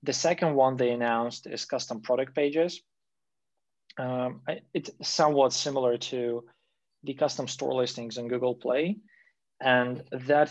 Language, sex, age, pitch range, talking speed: English, male, 20-39, 120-145 Hz, 130 wpm